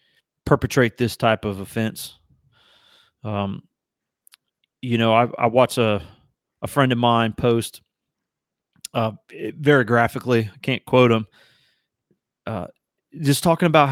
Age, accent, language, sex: 30-49, American, English, male